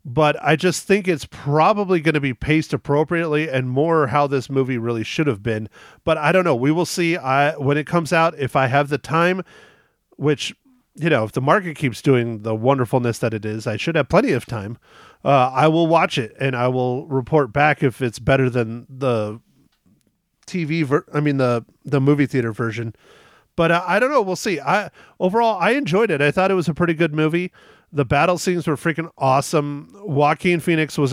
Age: 40-59